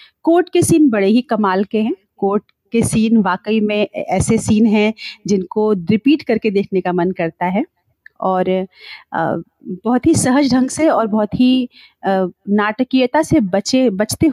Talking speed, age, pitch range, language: 155 wpm, 40-59, 190-245 Hz, Hindi